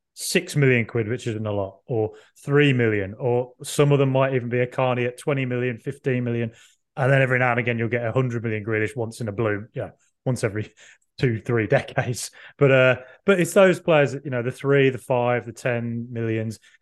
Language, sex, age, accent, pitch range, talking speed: English, male, 20-39, British, 115-145 Hz, 220 wpm